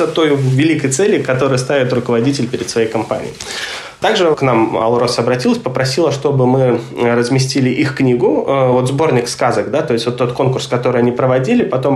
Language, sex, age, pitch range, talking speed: Russian, male, 20-39, 120-145 Hz, 165 wpm